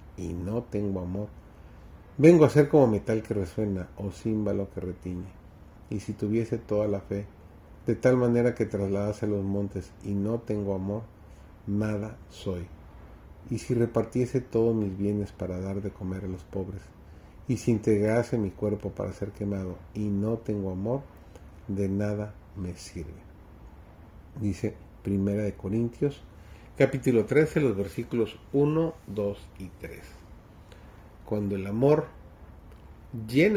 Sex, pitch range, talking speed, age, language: male, 90-110 Hz, 140 wpm, 40-59, Spanish